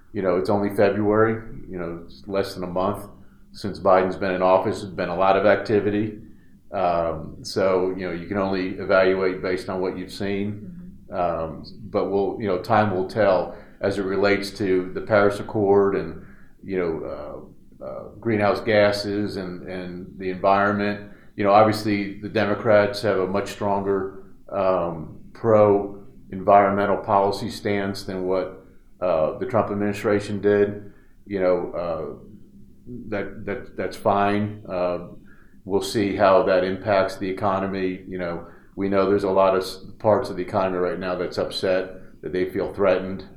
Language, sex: English, male